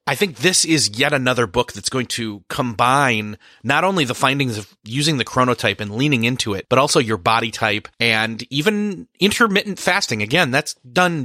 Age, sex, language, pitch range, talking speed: 30-49, male, English, 115-150 Hz, 185 wpm